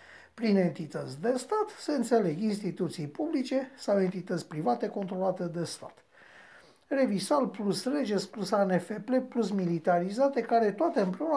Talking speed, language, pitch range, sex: 125 wpm, Romanian, 175-250 Hz, male